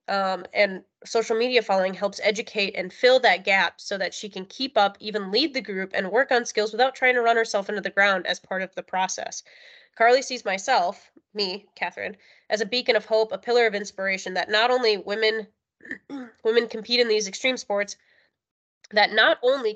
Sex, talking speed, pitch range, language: female, 195 wpm, 195-235 Hz, English